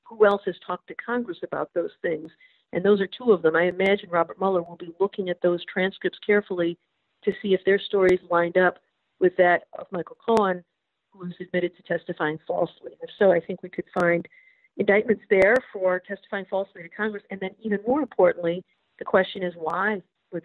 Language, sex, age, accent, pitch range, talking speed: English, female, 50-69, American, 175-210 Hz, 200 wpm